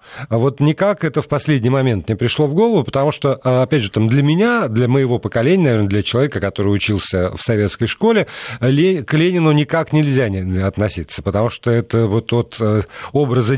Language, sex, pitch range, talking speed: Russian, male, 115-150 Hz, 175 wpm